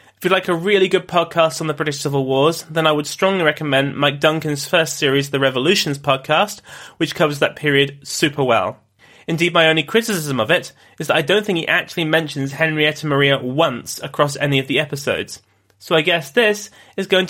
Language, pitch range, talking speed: English, 140-180 Hz, 200 wpm